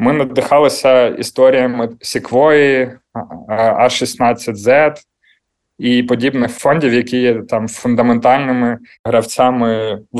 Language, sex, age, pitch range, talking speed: Ukrainian, male, 20-39, 115-130 Hz, 80 wpm